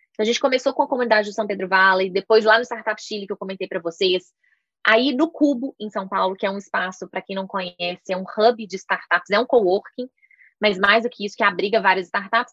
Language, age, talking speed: Portuguese, 20-39, 250 wpm